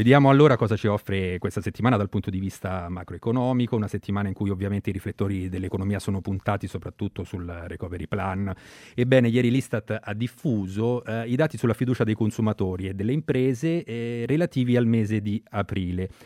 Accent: native